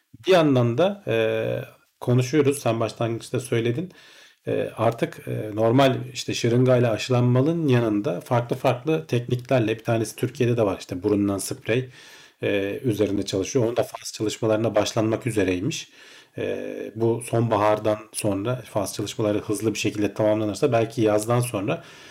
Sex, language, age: male, Turkish, 40-59